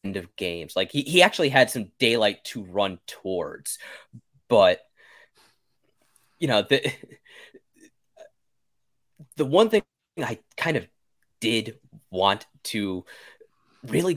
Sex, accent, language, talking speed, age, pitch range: male, American, English, 110 wpm, 20-39, 110-165 Hz